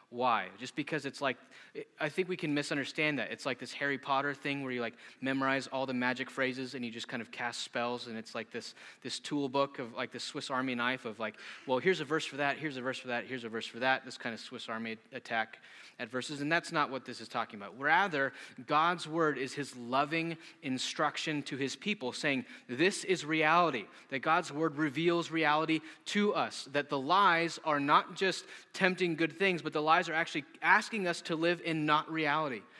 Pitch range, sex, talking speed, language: 135-165 Hz, male, 220 wpm, English